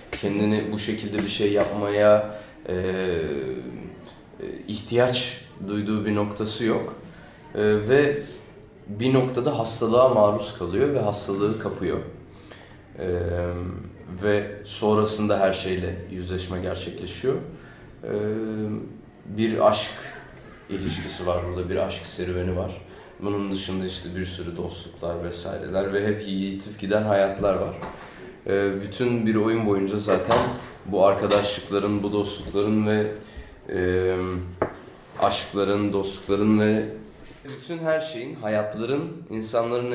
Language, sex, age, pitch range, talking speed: Turkish, male, 30-49, 95-110 Hz, 105 wpm